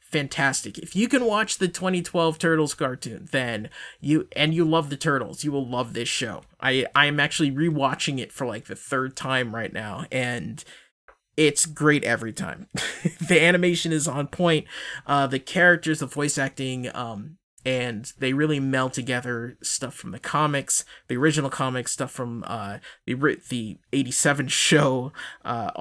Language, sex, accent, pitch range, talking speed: English, male, American, 130-165 Hz, 165 wpm